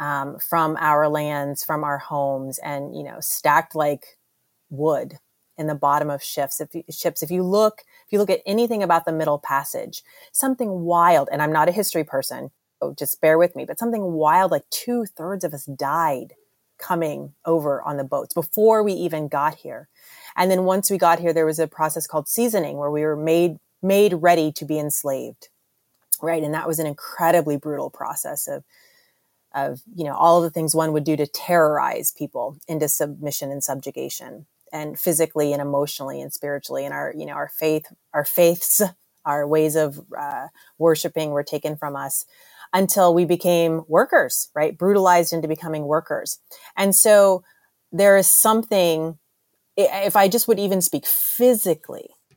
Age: 30-49